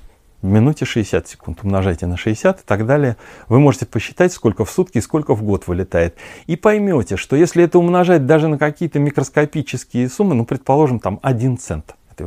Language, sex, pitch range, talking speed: Russian, male, 105-150 Hz, 185 wpm